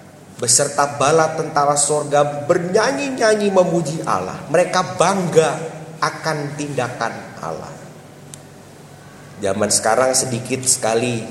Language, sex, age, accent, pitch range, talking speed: English, male, 30-49, Indonesian, 140-205 Hz, 85 wpm